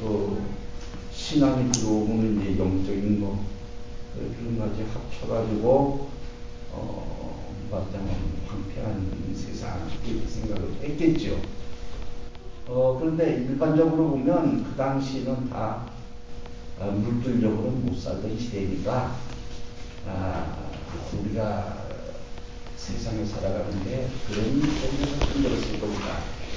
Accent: native